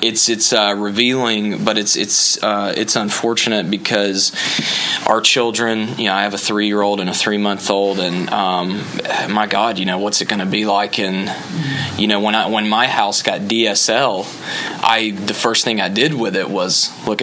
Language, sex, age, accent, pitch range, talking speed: English, male, 20-39, American, 95-105 Hz, 190 wpm